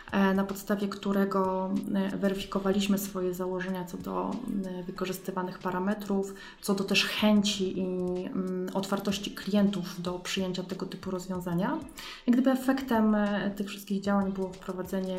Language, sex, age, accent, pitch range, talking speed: Polish, female, 30-49, native, 185-210 Hz, 115 wpm